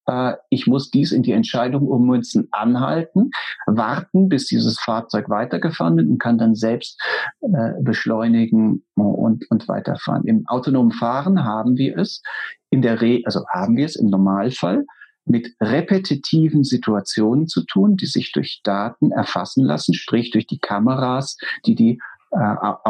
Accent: German